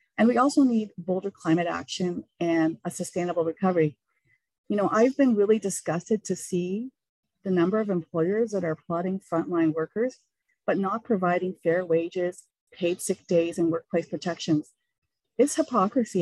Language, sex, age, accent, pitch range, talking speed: English, female, 40-59, American, 170-235 Hz, 150 wpm